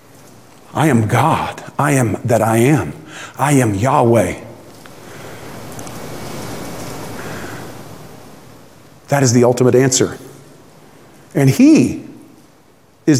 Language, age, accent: English, 50-69, American